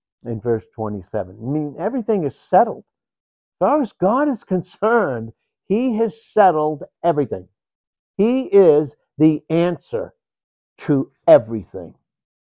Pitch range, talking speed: 105-145 Hz, 115 wpm